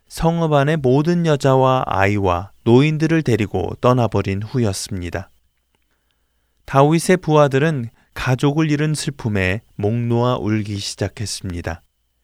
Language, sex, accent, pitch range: Korean, male, native, 100-150 Hz